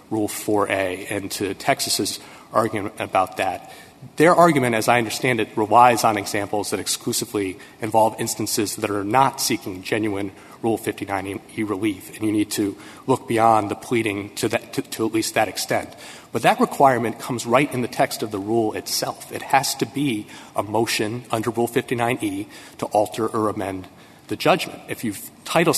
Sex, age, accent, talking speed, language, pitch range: male, 30-49, American, 175 wpm, English, 105-135 Hz